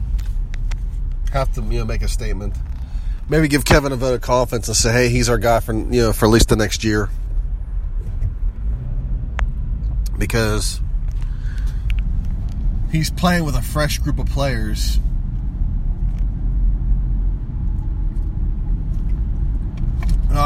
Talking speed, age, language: 115 wpm, 30-49, English